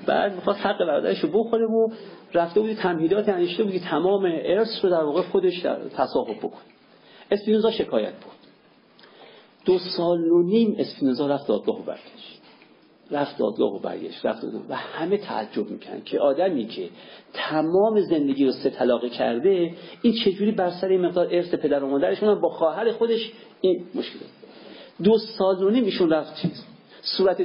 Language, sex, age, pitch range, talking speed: Persian, male, 50-69, 160-215 Hz, 150 wpm